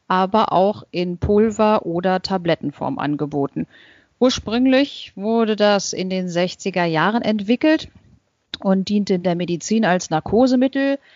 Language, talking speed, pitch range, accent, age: German, 115 wpm, 170-215 Hz, German, 40-59